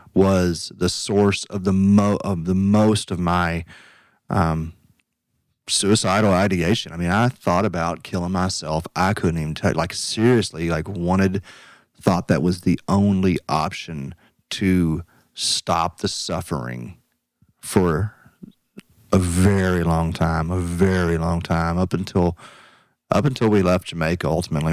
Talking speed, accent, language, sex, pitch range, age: 135 wpm, American, English, male, 85-100 Hz, 30-49